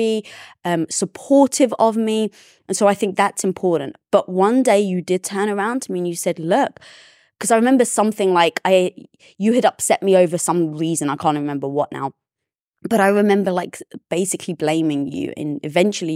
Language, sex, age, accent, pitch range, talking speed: English, female, 20-39, British, 175-220 Hz, 190 wpm